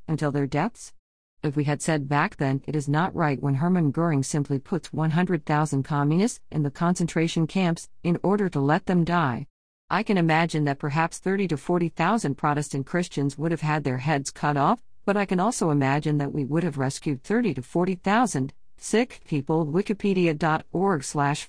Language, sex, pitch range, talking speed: English, female, 145-195 Hz, 180 wpm